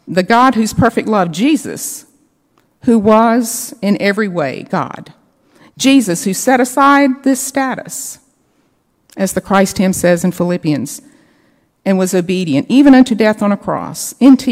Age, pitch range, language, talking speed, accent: 50-69, 170-235 Hz, English, 145 wpm, American